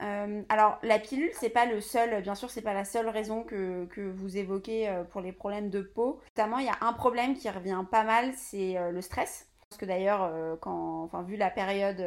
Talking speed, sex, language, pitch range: 240 wpm, female, French, 185-220 Hz